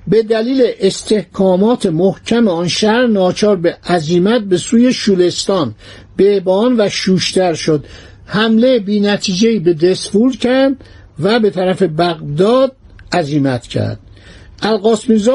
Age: 60-79